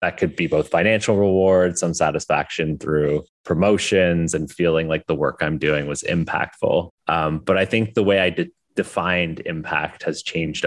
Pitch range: 80-100 Hz